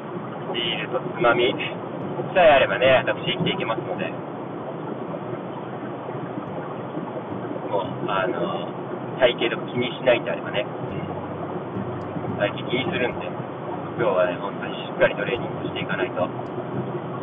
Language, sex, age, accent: Japanese, male, 40-59, native